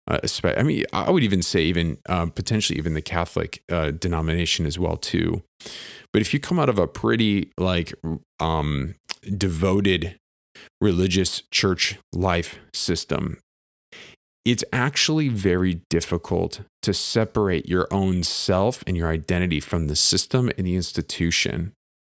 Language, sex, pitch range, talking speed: English, male, 80-105 Hz, 140 wpm